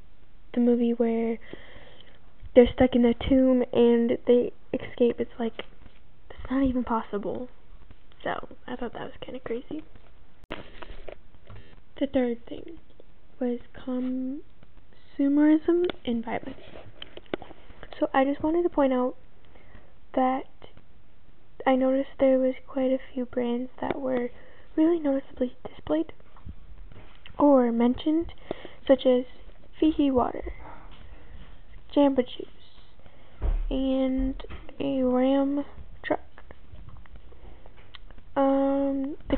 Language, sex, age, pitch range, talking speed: English, female, 10-29, 250-275 Hz, 100 wpm